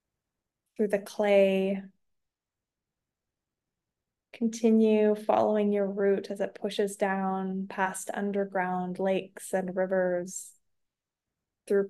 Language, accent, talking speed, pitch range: English, American, 85 wpm, 185-210 Hz